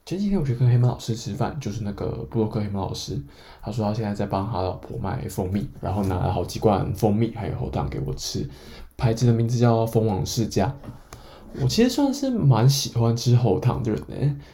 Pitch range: 105-125 Hz